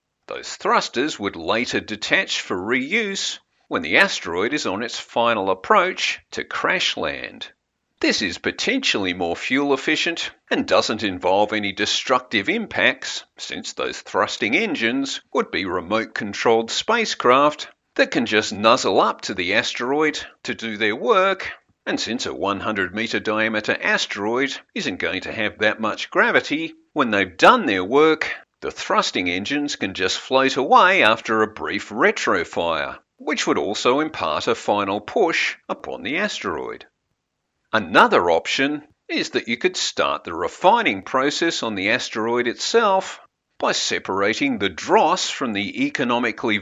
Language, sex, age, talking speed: English, male, 50-69, 145 wpm